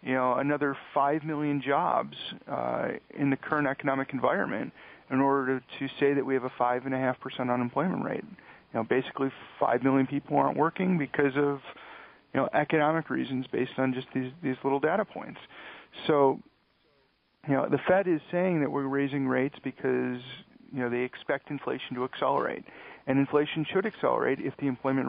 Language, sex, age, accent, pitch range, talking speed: English, male, 40-59, American, 130-150 Hz, 180 wpm